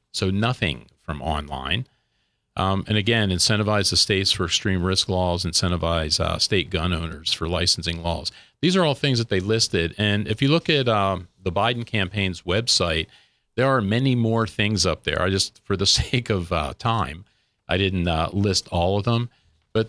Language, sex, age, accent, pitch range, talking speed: English, male, 40-59, American, 90-115 Hz, 185 wpm